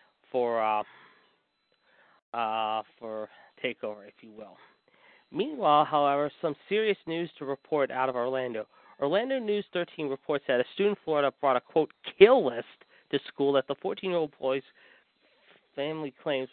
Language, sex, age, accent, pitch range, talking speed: English, male, 40-59, American, 130-175 Hz, 145 wpm